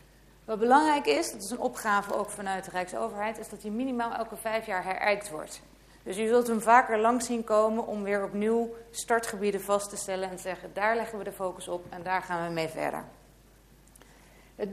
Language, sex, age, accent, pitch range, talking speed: Dutch, female, 40-59, Dutch, 180-220 Hz, 210 wpm